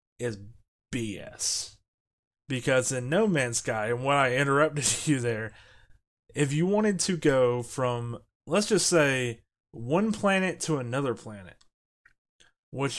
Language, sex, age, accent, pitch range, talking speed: English, male, 30-49, American, 115-145 Hz, 130 wpm